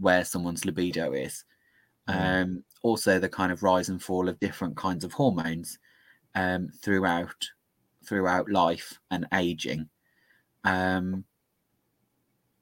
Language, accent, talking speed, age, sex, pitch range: English, British, 115 wpm, 30-49, male, 90-105 Hz